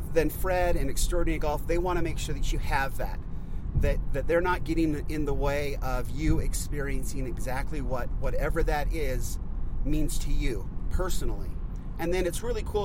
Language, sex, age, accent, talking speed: English, male, 40-59, American, 180 wpm